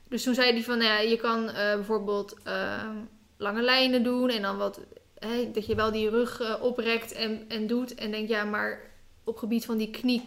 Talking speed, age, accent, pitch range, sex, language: 205 wpm, 10-29, Dutch, 210-235 Hz, female, Dutch